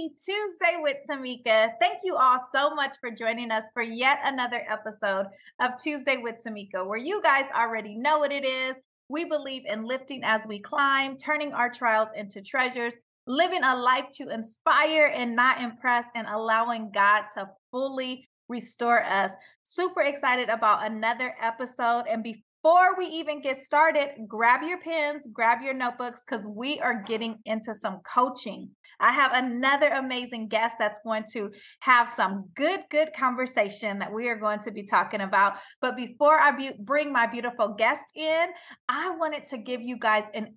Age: 30-49